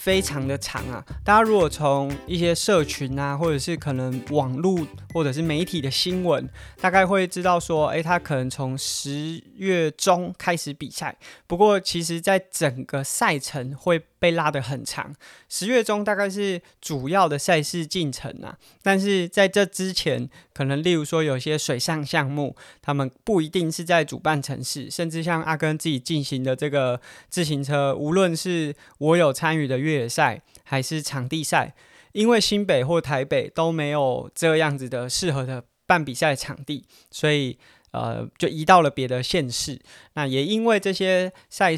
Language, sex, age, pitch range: Chinese, male, 20-39, 140-175 Hz